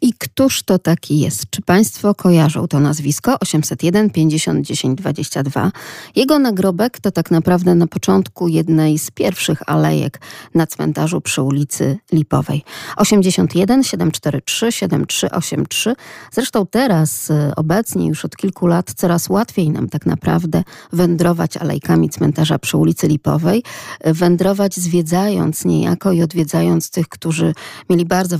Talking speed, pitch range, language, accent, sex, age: 125 wpm, 155-195 Hz, Polish, native, female, 40-59